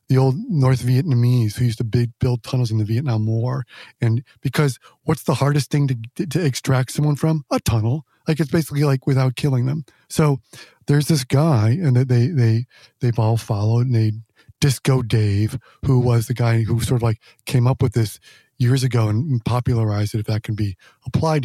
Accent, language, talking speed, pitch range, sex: American, English, 200 wpm, 115-135 Hz, male